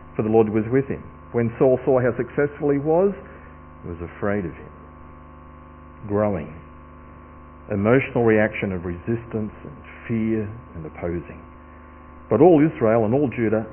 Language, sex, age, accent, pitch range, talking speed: English, male, 50-69, Australian, 80-115 Hz, 145 wpm